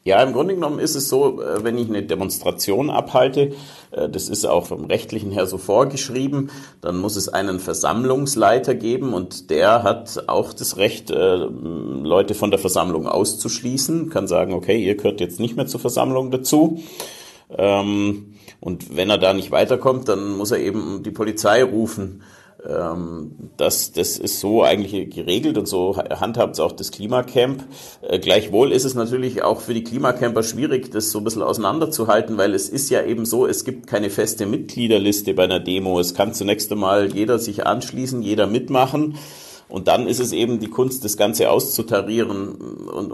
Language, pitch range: German, 95-125 Hz